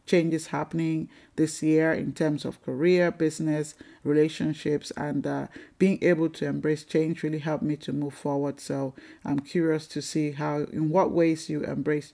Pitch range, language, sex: 150-175 Hz, English, male